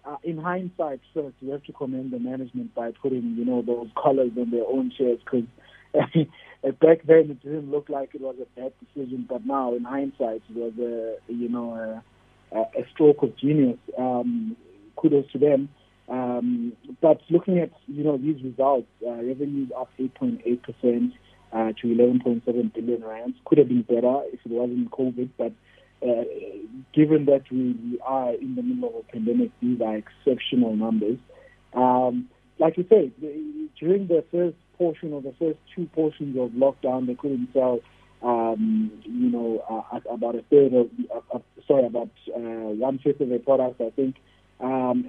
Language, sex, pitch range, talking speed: English, male, 120-150 Hz, 175 wpm